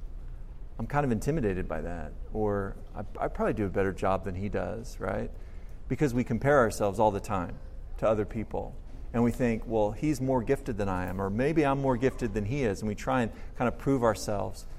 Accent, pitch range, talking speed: American, 105-160 Hz, 220 wpm